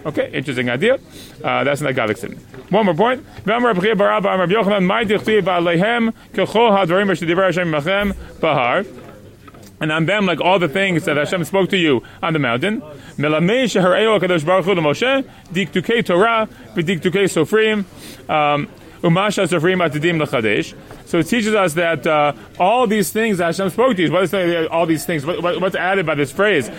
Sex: male